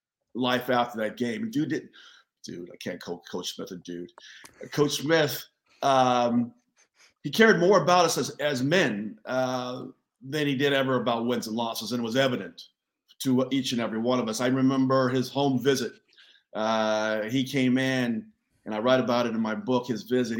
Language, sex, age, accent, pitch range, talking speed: English, male, 50-69, American, 125-160 Hz, 190 wpm